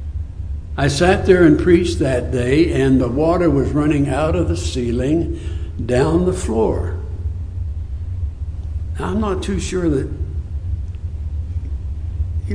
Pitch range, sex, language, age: 80-135 Hz, male, English, 60-79